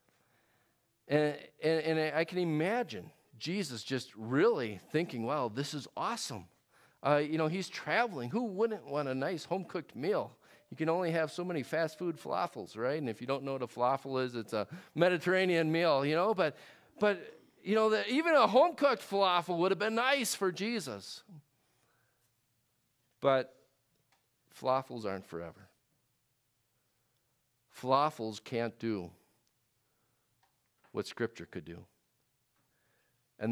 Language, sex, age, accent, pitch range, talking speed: English, male, 40-59, American, 110-155 Hz, 145 wpm